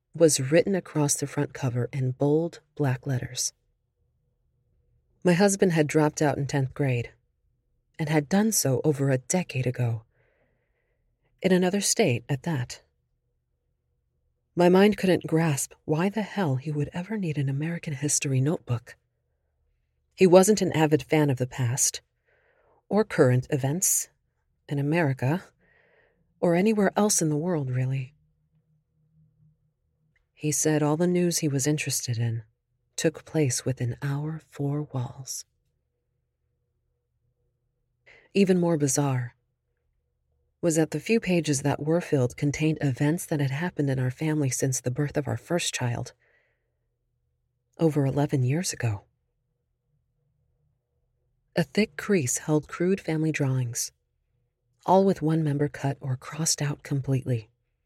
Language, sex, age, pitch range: English, female, 40-59, 125-160 Hz